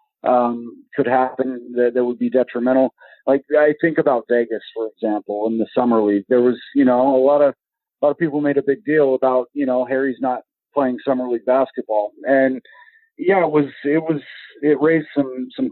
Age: 40-59